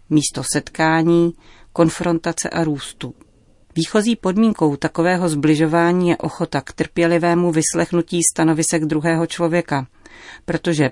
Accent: native